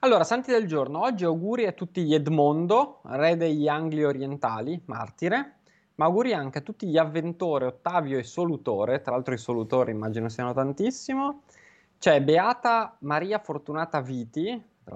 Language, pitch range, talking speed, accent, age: Italian, 125-190 Hz, 155 wpm, native, 20-39